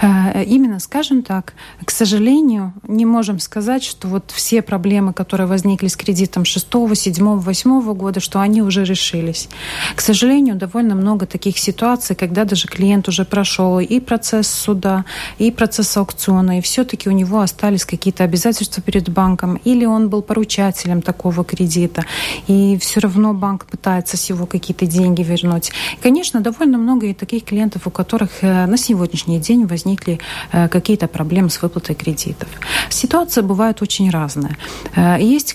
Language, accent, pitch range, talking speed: Russian, native, 185-225 Hz, 150 wpm